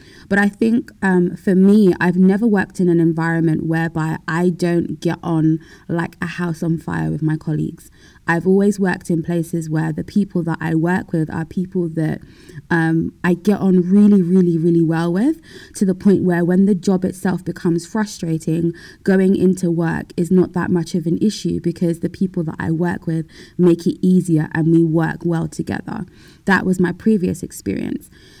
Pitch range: 165-185 Hz